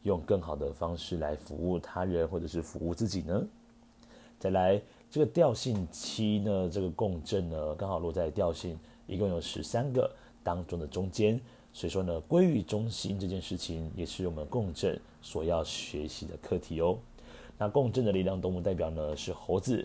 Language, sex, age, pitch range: Chinese, male, 30-49, 85-105 Hz